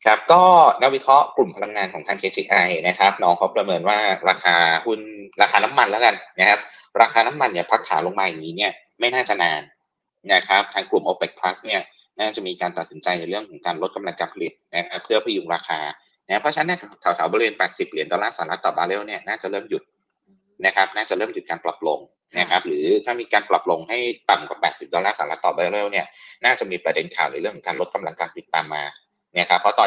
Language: Thai